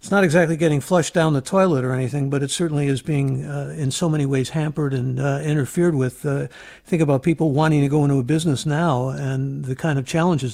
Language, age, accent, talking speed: English, 60-79, American, 235 wpm